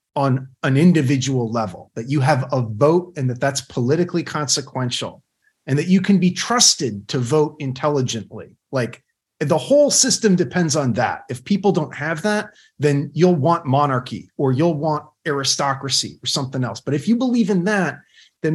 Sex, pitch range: male, 140-195 Hz